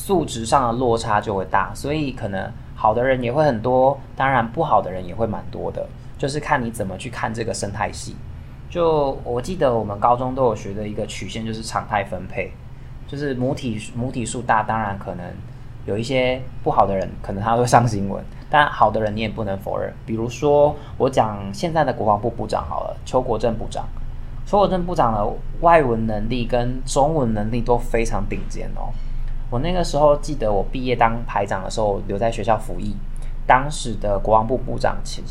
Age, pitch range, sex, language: 20-39, 105-130 Hz, male, Chinese